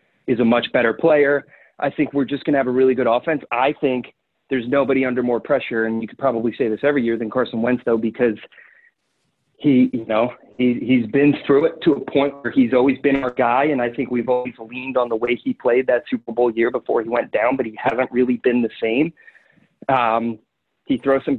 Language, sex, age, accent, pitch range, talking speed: English, male, 30-49, American, 115-135 Hz, 235 wpm